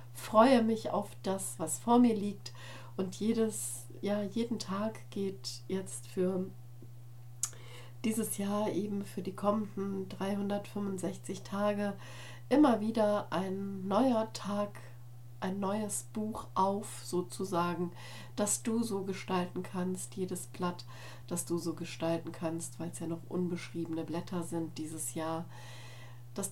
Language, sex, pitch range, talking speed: German, female, 125-195 Hz, 125 wpm